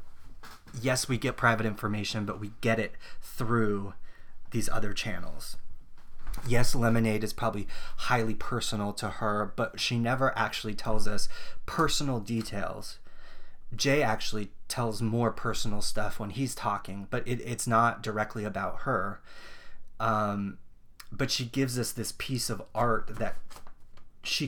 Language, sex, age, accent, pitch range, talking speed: English, male, 30-49, American, 105-120 Hz, 135 wpm